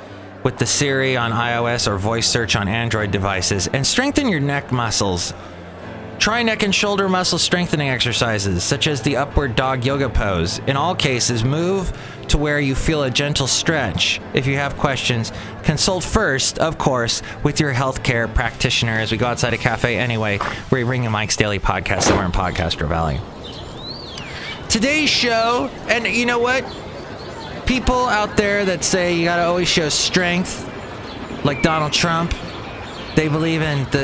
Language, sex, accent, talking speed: English, male, American, 160 wpm